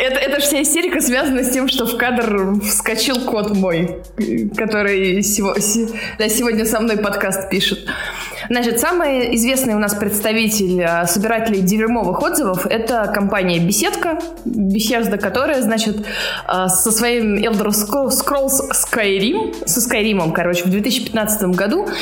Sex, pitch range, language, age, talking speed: female, 205-255 Hz, Russian, 20-39, 120 wpm